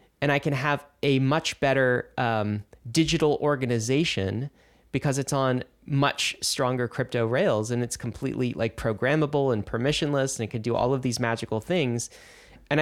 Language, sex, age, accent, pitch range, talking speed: English, male, 20-39, American, 110-140 Hz, 160 wpm